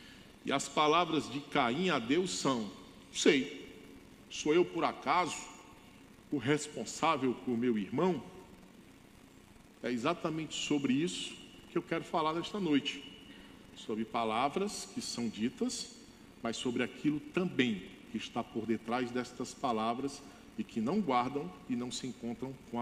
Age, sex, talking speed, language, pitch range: 50-69, male, 135 wpm, Portuguese, 125-195 Hz